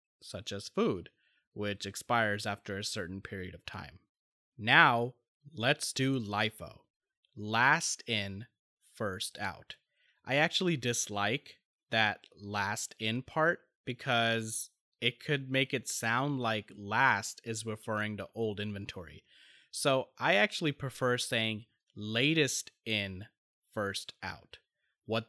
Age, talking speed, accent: 30-49, 115 wpm, American